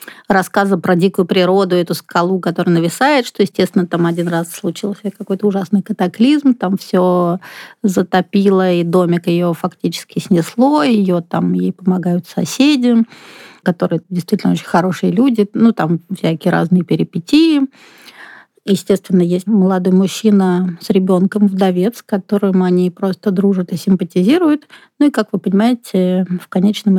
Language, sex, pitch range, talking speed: Russian, female, 180-215 Hz, 135 wpm